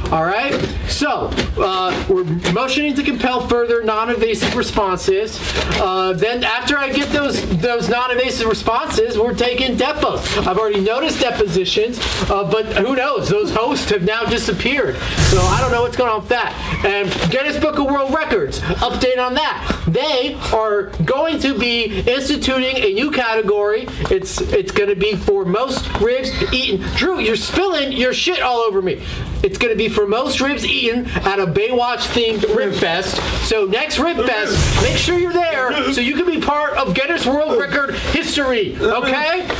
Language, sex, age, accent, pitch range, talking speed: English, male, 40-59, American, 210-280 Hz, 165 wpm